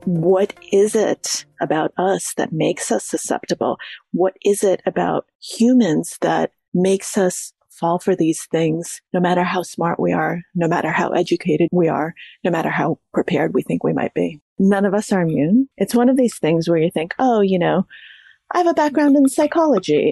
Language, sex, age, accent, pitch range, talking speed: English, female, 30-49, American, 165-205 Hz, 190 wpm